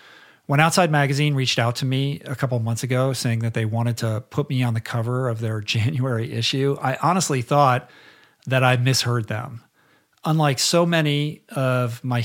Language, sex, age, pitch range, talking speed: English, male, 50-69, 120-150 Hz, 180 wpm